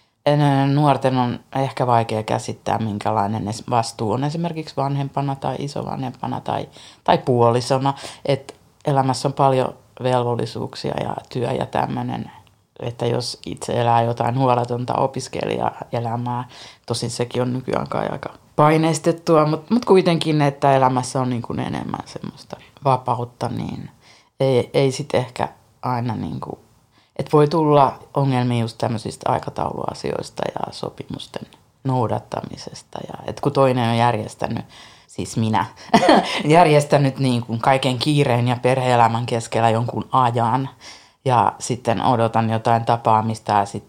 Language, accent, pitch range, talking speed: Finnish, native, 115-135 Hz, 115 wpm